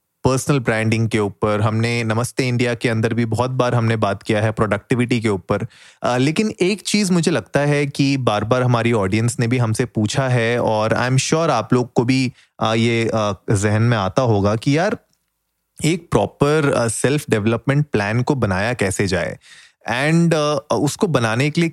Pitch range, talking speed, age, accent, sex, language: 110-135 Hz, 185 wpm, 30-49, native, male, Hindi